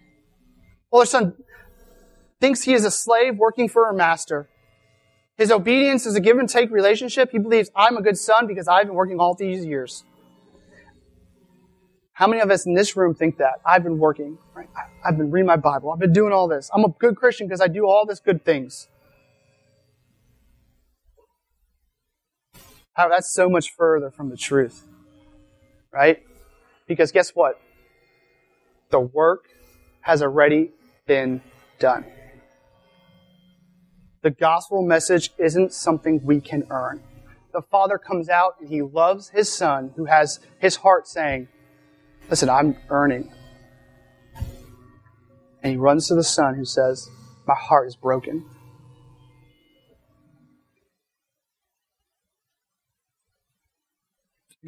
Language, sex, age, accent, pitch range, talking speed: English, male, 30-49, American, 130-195 Hz, 130 wpm